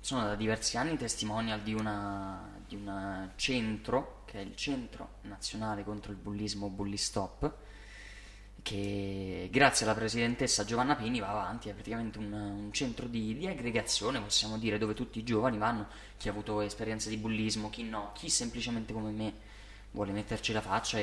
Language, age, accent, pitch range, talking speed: Italian, 20-39, native, 105-125 Hz, 165 wpm